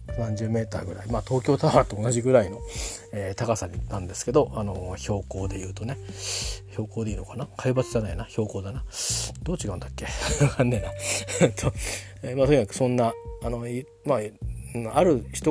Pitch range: 95-130 Hz